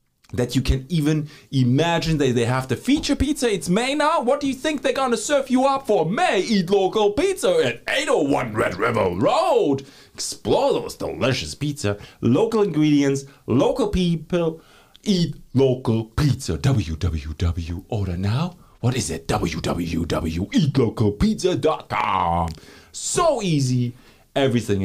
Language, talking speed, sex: English, 135 wpm, male